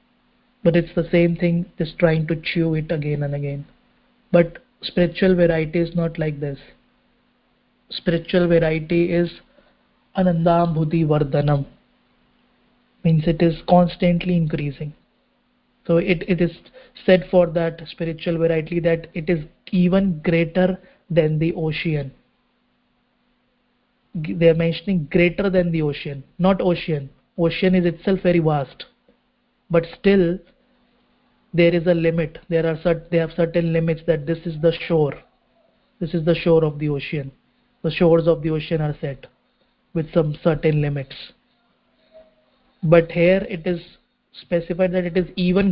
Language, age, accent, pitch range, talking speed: English, 30-49, Indian, 165-185 Hz, 140 wpm